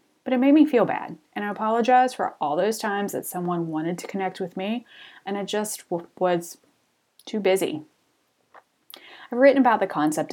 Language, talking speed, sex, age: English, 180 wpm, female, 30-49